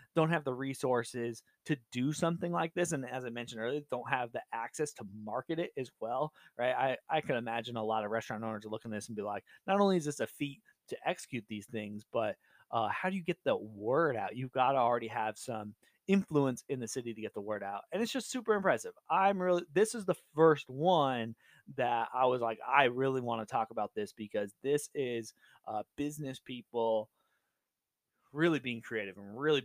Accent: American